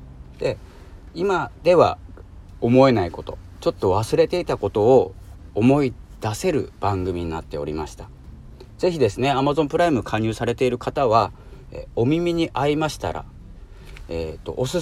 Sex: male